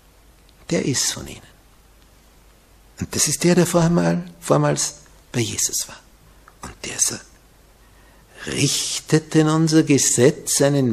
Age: 60-79